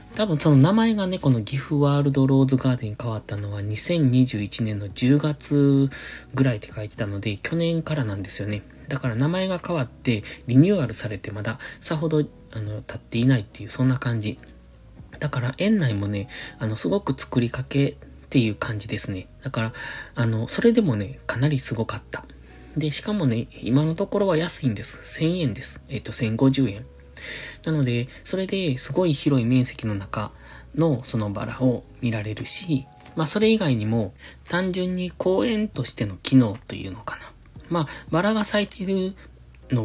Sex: male